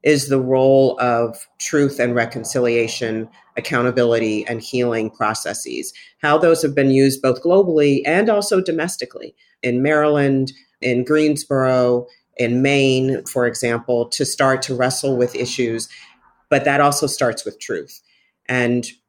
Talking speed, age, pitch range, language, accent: 130 wpm, 40-59, 120-150 Hz, English, American